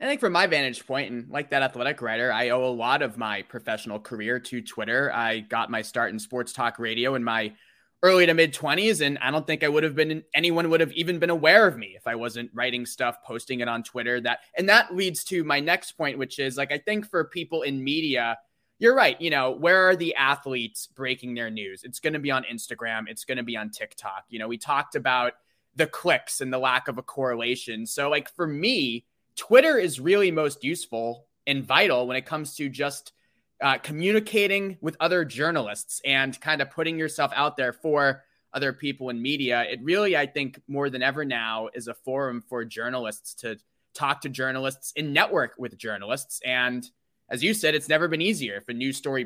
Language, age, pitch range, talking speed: English, 20-39, 120-155 Hz, 220 wpm